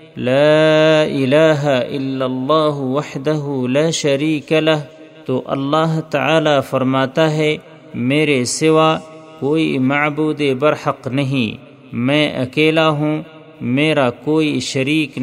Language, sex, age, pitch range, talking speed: Urdu, male, 40-59, 135-155 Hz, 100 wpm